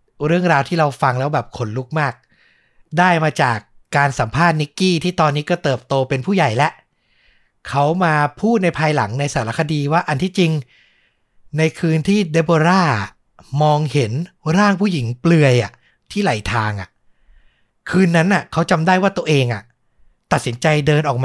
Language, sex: Thai, male